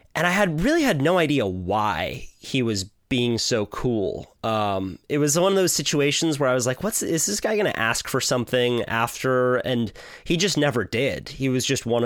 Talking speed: 215 wpm